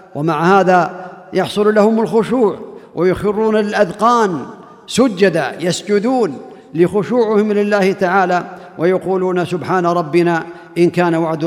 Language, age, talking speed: Arabic, 50-69, 95 wpm